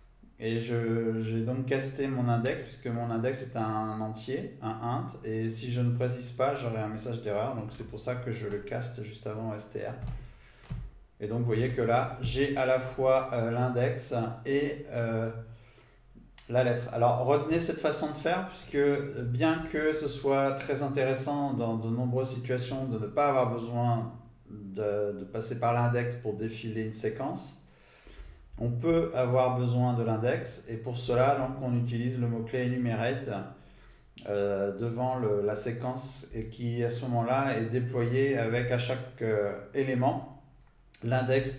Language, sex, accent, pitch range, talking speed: French, male, French, 110-130 Hz, 170 wpm